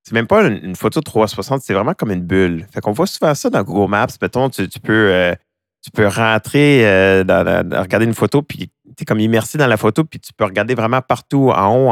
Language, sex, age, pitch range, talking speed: French, male, 30-49, 95-125 Hz, 245 wpm